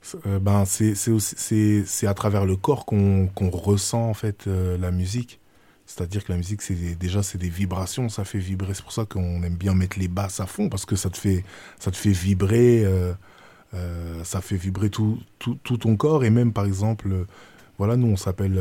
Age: 20-39